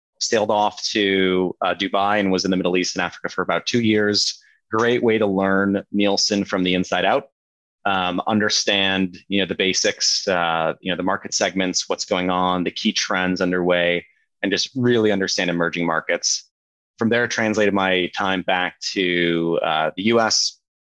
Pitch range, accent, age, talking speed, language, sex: 90-105 Hz, American, 30-49, 175 wpm, English, male